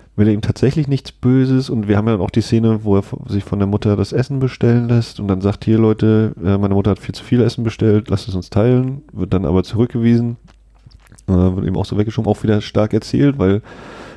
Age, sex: 30-49, male